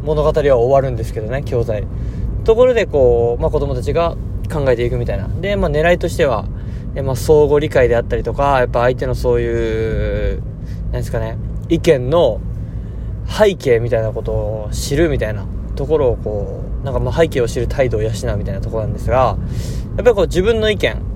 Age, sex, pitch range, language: 20-39, male, 110-135 Hz, Japanese